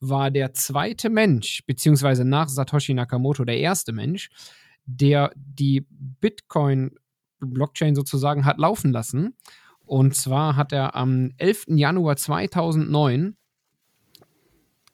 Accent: German